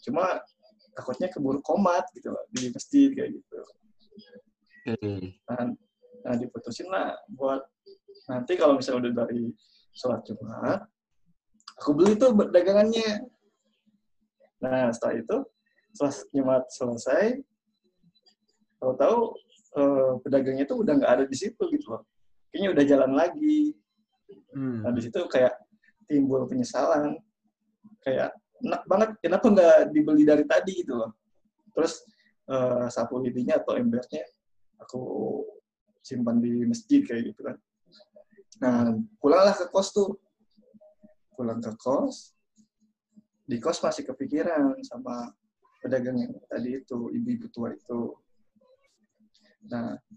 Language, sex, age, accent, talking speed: Indonesian, male, 20-39, native, 115 wpm